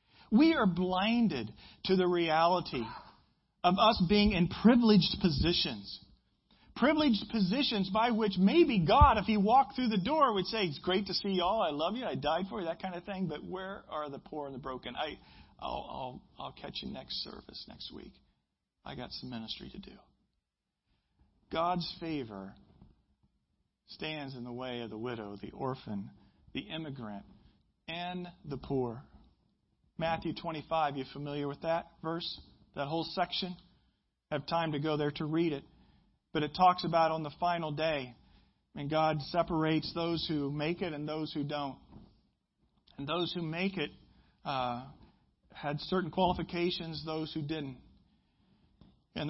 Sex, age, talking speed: male, 40-59, 165 wpm